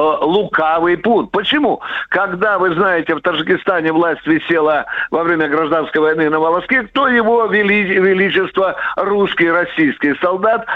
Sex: male